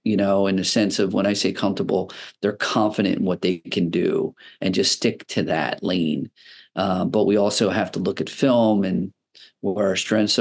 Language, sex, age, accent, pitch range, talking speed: English, male, 40-59, American, 95-115 Hz, 210 wpm